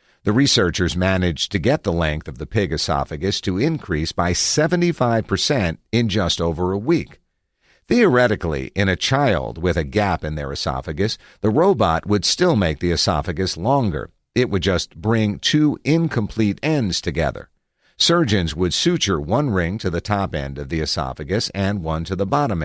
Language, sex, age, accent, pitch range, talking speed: English, male, 50-69, American, 85-125 Hz, 165 wpm